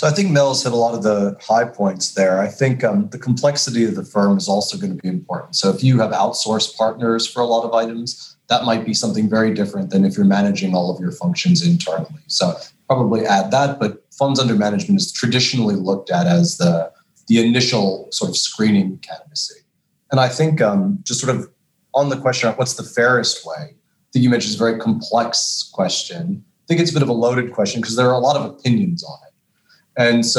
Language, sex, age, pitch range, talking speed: English, male, 30-49, 110-145 Hz, 225 wpm